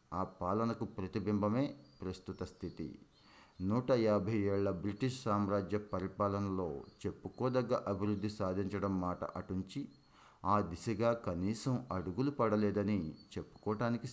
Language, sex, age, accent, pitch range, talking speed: Telugu, male, 50-69, native, 95-110 Hz, 95 wpm